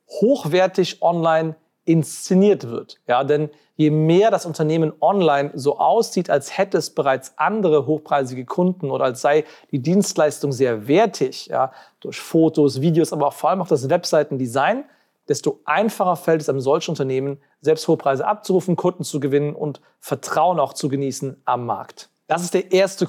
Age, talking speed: 40-59, 160 wpm